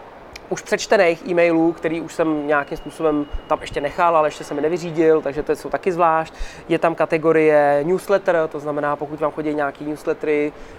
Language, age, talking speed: Czech, 20-39, 180 wpm